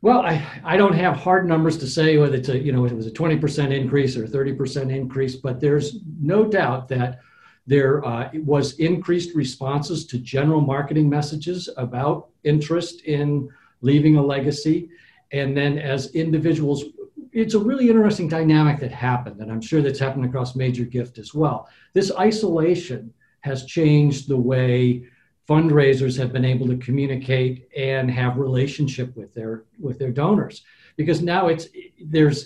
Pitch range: 125-155 Hz